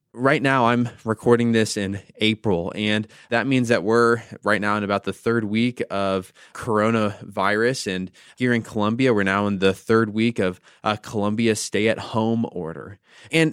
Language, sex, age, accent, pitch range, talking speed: English, male, 20-39, American, 110-140 Hz, 165 wpm